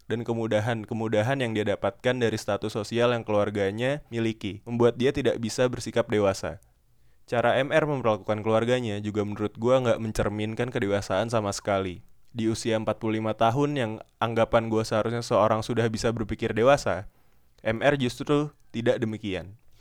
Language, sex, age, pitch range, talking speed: Indonesian, male, 20-39, 105-125 Hz, 140 wpm